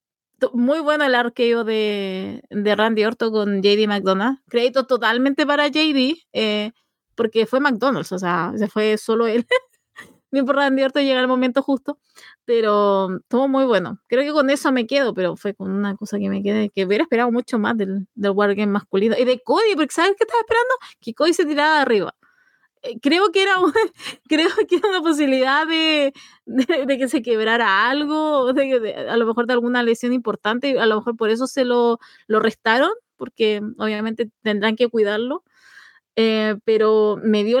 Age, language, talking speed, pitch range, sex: 20-39, Spanish, 185 wpm, 220-295 Hz, female